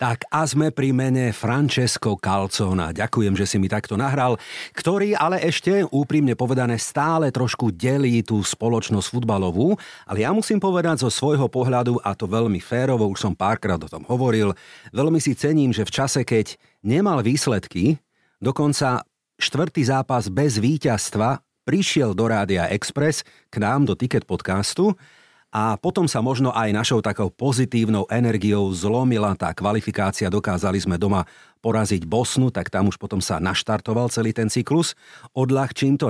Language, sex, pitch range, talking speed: Slovak, male, 105-145 Hz, 155 wpm